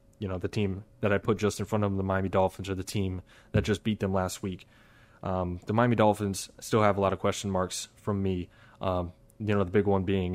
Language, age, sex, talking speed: English, 20-39, male, 255 wpm